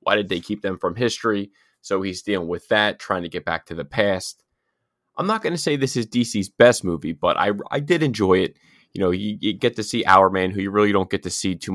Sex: male